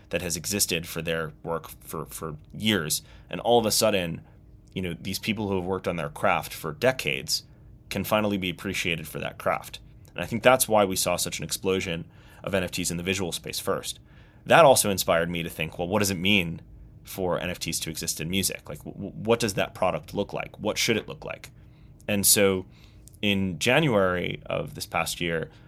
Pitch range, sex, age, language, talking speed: 90-105 Hz, male, 30-49, English, 205 wpm